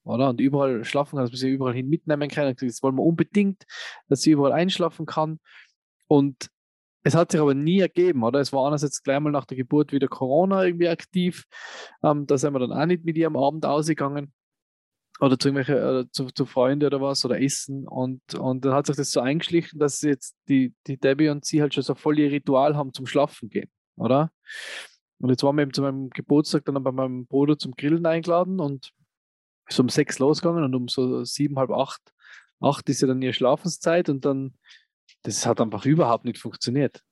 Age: 20-39